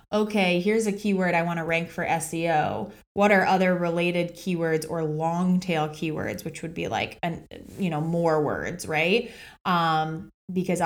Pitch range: 160-190 Hz